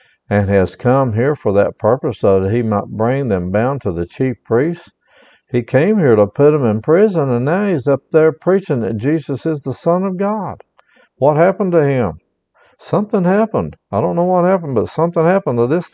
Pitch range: 105-140 Hz